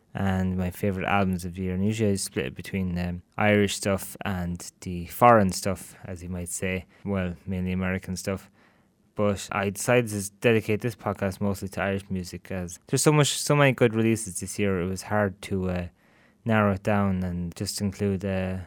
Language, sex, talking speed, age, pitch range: English, male, 195 wpm, 20-39, 95-115 Hz